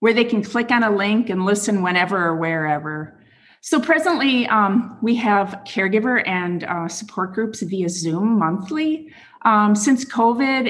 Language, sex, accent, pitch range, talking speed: English, female, American, 170-220 Hz, 155 wpm